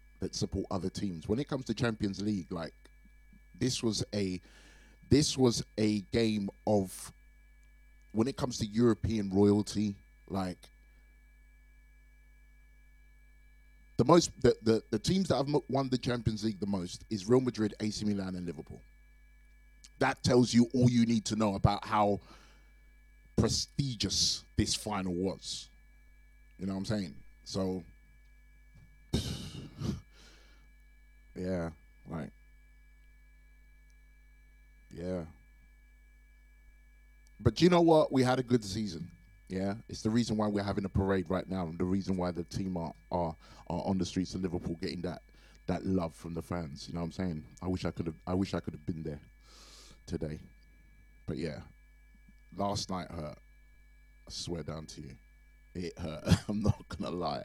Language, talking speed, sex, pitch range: English, 150 wpm, male, 90-115 Hz